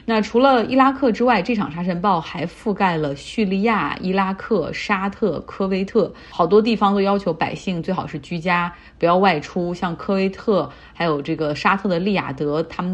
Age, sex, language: 30-49, female, Chinese